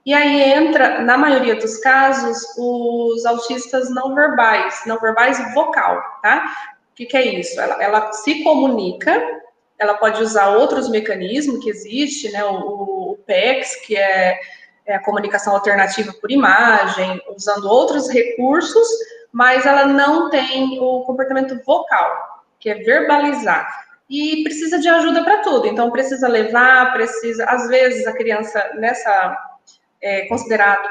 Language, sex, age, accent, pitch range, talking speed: Portuguese, female, 20-39, Brazilian, 220-290 Hz, 140 wpm